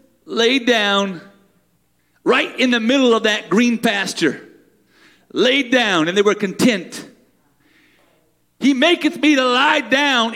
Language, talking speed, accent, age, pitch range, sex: English, 125 wpm, American, 40-59, 215-270 Hz, male